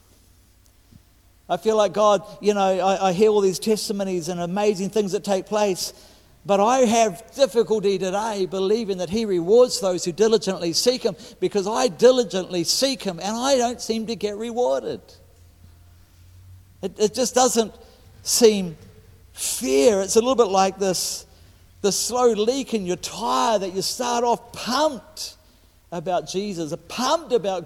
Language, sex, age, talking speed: English, male, 50-69, 155 wpm